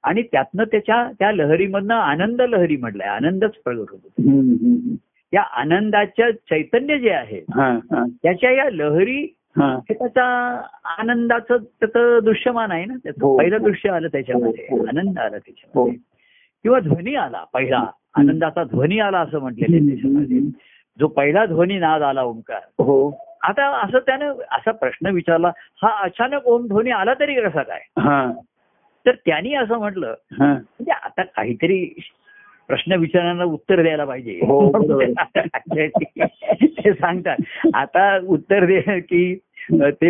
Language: Marathi